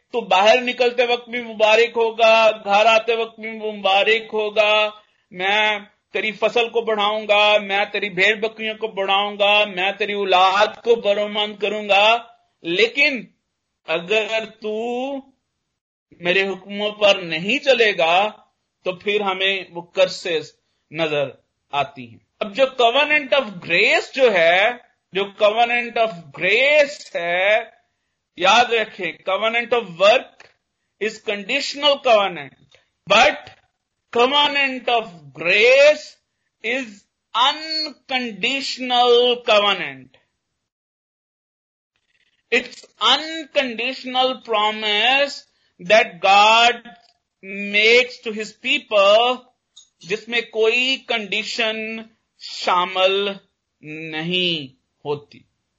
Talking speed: 95 wpm